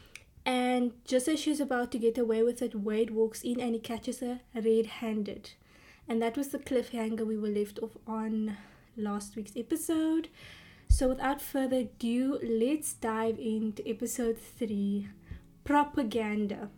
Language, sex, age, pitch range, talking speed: English, female, 20-39, 225-265 Hz, 145 wpm